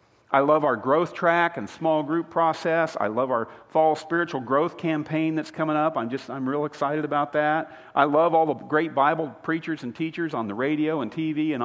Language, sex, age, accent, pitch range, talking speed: English, male, 50-69, American, 120-160 Hz, 210 wpm